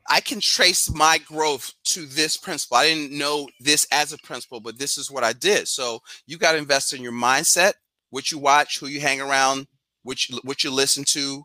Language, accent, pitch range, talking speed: English, American, 135-160 Hz, 210 wpm